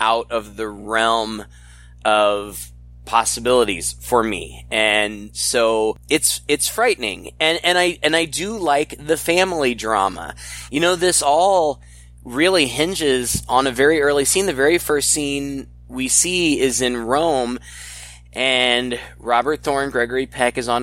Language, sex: English, male